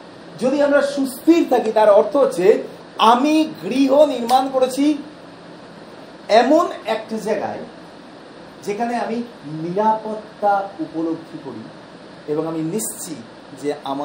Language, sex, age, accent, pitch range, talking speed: Bengali, male, 40-59, native, 175-270 Hz, 95 wpm